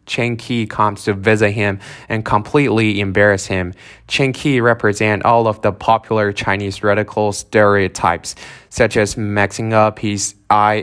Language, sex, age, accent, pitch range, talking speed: English, male, 20-39, American, 100-115 Hz, 145 wpm